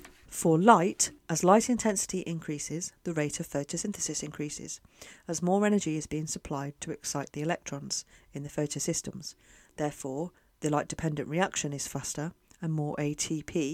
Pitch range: 150-175 Hz